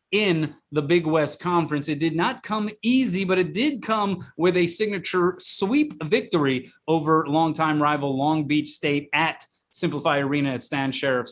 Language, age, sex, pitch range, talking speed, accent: English, 30-49, male, 140-175 Hz, 165 wpm, American